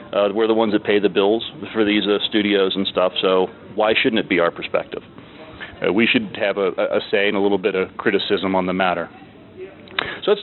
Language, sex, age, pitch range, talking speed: English, male, 40-59, 105-120 Hz, 230 wpm